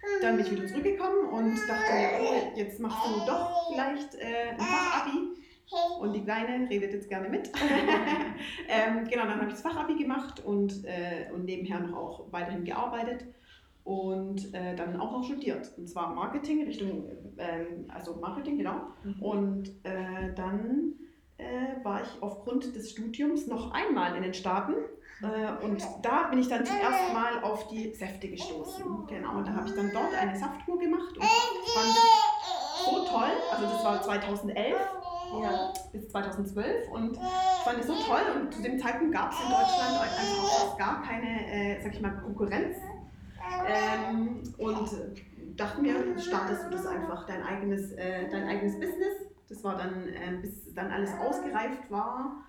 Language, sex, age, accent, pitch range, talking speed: German, female, 30-49, German, 195-295 Hz, 165 wpm